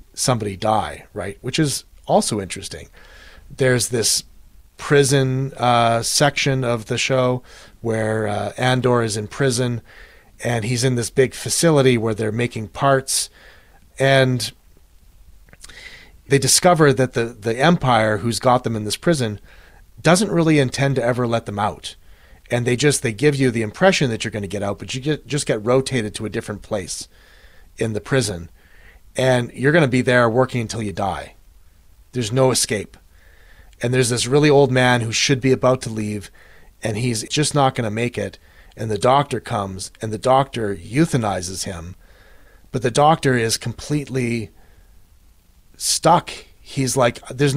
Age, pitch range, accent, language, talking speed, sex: 30-49, 100-130 Hz, American, English, 160 wpm, male